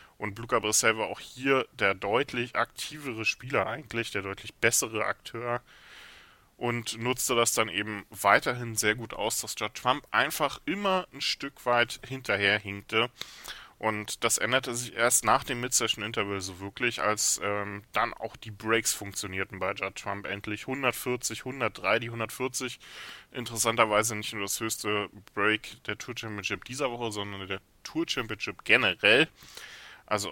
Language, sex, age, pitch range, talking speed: German, male, 10-29, 100-120 Hz, 145 wpm